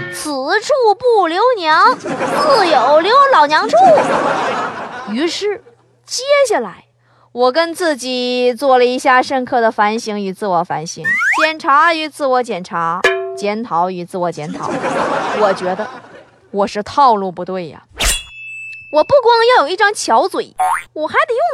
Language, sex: Chinese, female